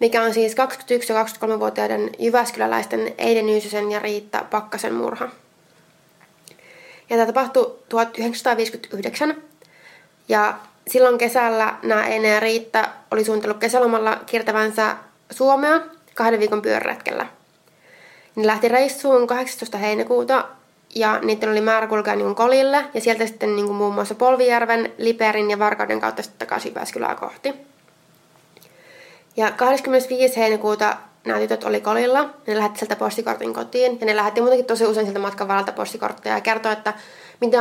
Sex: female